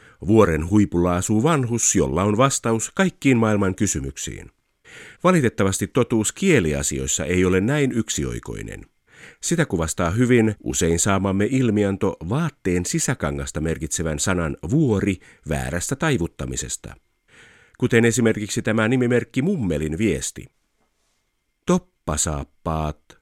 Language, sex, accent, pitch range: Finnish, male, native, 80-125 Hz